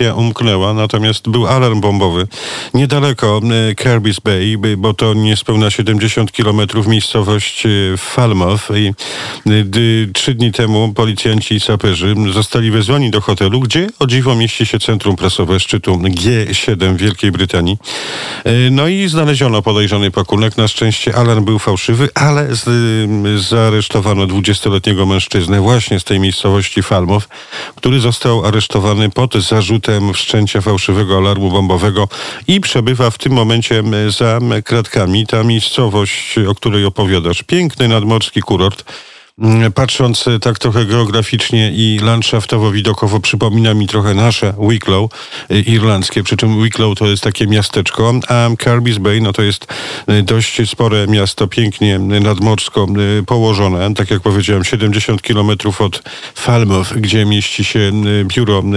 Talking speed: 125 wpm